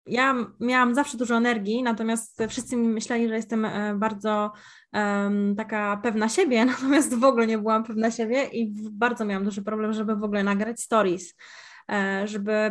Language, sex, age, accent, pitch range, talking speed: Polish, female, 20-39, native, 215-260 Hz, 160 wpm